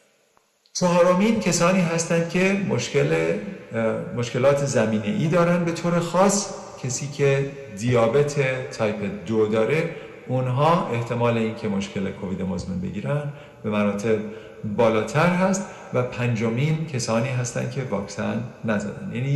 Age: 50-69